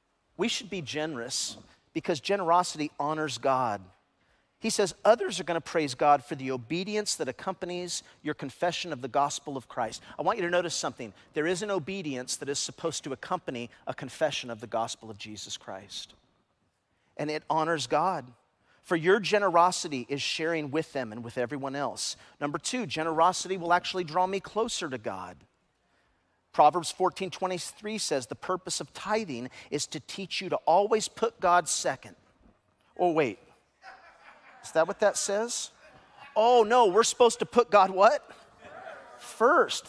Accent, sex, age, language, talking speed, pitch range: American, male, 40-59, English, 160 wpm, 145-195 Hz